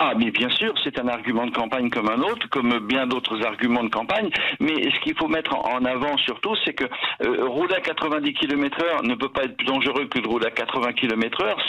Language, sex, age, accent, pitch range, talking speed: French, male, 60-79, French, 125-150 Hz, 240 wpm